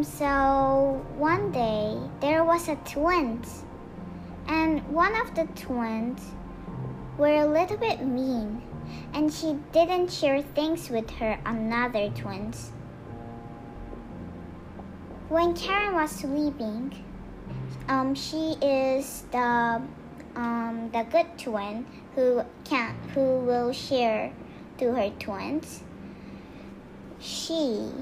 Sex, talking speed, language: male, 100 wpm, English